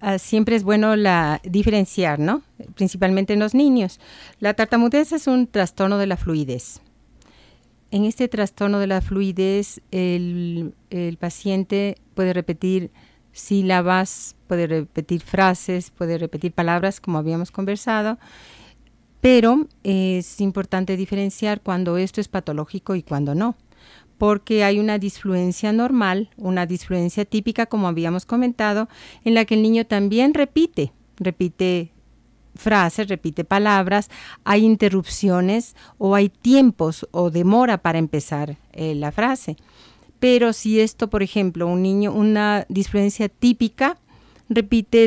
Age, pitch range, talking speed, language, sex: 40-59, 180-220 Hz, 130 wpm, Spanish, female